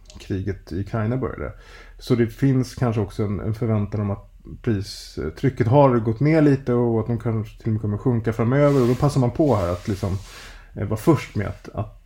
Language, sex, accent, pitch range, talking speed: Swedish, male, Norwegian, 100-125 Hz, 210 wpm